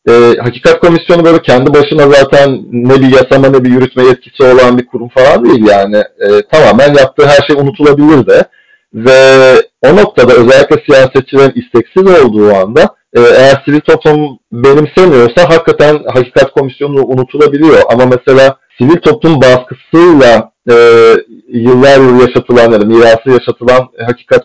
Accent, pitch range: native, 125-155 Hz